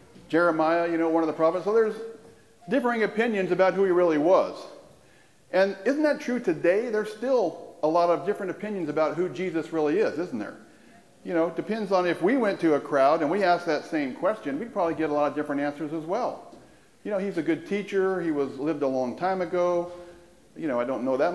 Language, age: English, 50-69